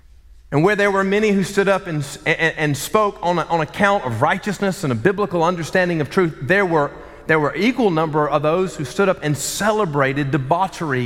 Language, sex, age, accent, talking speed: English, male, 30-49, American, 200 wpm